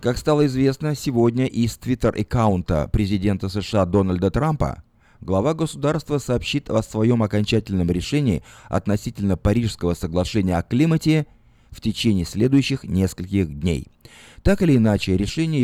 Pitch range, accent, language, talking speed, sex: 95-125 Hz, native, Russian, 120 wpm, male